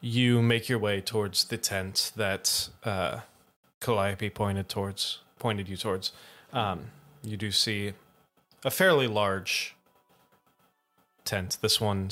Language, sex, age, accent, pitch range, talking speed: English, male, 20-39, American, 100-110 Hz, 125 wpm